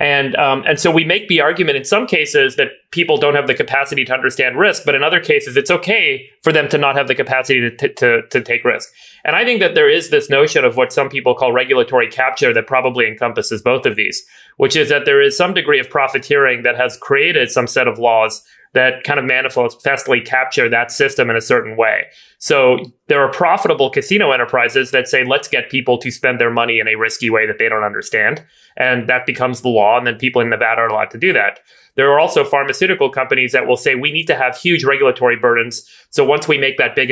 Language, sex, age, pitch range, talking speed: English, male, 30-49, 120-180 Hz, 235 wpm